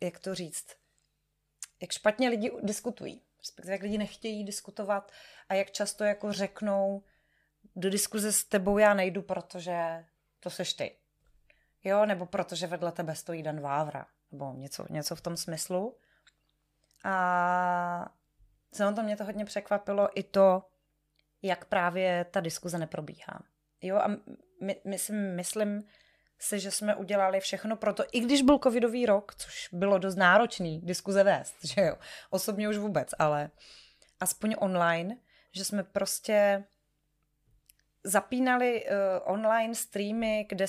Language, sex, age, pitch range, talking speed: Czech, female, 30-49, 175-210 Hz, 135 wpm